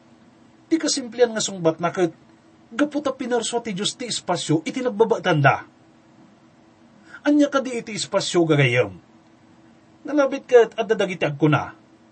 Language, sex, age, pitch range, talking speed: English, male, 30-49, 155-235 Hz, 105 wpm